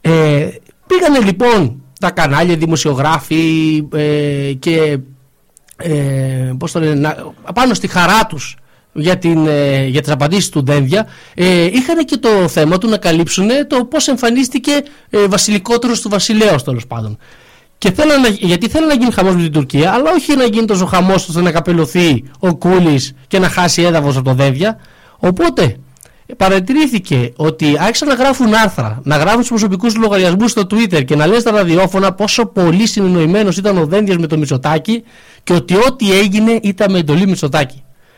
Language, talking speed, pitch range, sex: Greek, 145 wpm, 150-215 Hz, male